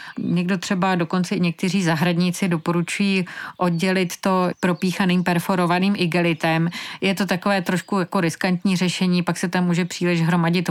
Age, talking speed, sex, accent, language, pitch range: 30-49, 140 wpm, female, native, Czech, 160-180 Hz